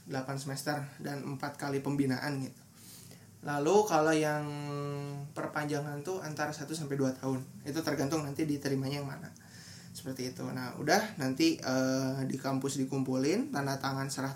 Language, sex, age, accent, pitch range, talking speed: Indonesian, male, 20-39, native, 135-155 Hz, 140 wpm